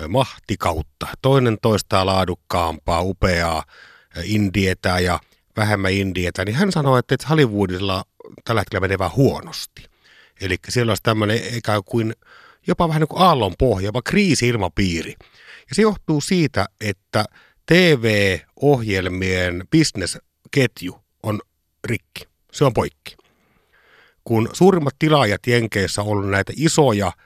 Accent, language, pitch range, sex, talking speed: native, Finnish, 95-135 Hz, male, 120 wpm